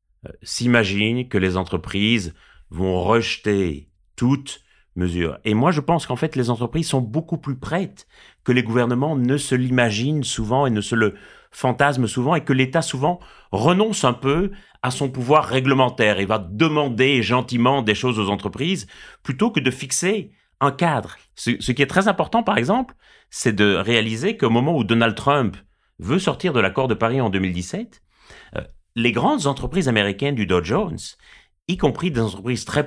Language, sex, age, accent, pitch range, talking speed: French, male, 30-49, French, 105-150 Hz, 175 wpm